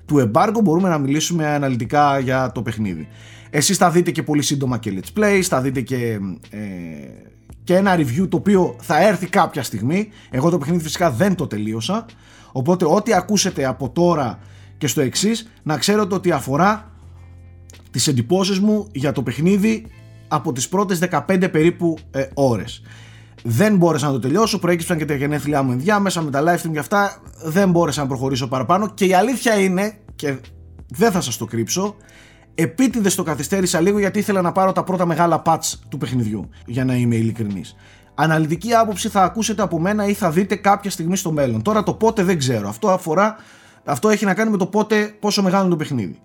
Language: Greek